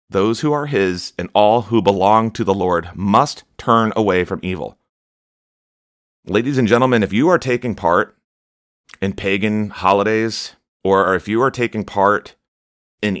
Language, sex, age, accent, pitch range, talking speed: English, male, 30-49, American, 85-105 Hz, 155 wpm